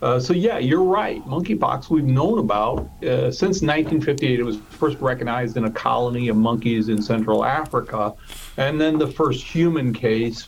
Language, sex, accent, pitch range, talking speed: English, male, American, 120-155 Hz, 170 wpm